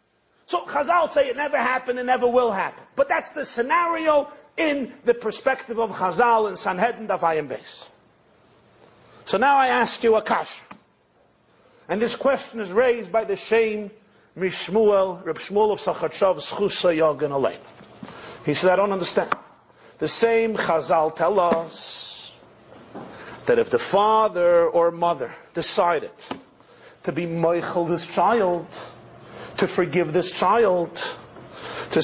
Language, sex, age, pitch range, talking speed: English, male, 50-69, 170-250 Hz, 130 wpm